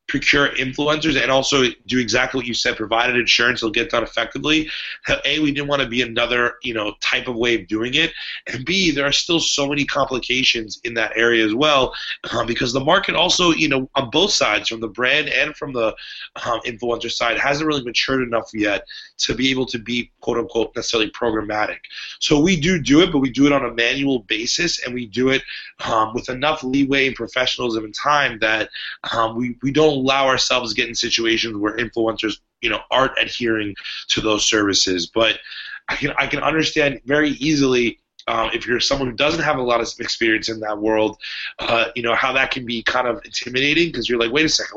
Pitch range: 115-140 Hz